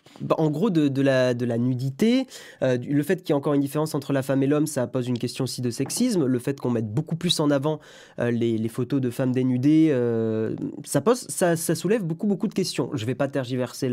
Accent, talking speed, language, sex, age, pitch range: French, 255 wpm, French, male, 20-39, 130-185 Hz